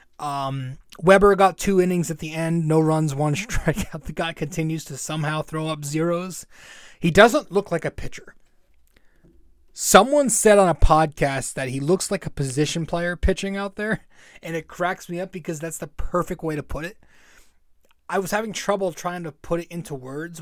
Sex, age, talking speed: male, 20-39, 190 wpm